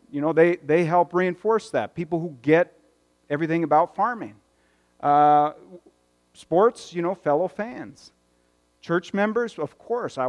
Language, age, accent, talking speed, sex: English, 40-59, American, 140 wpm, male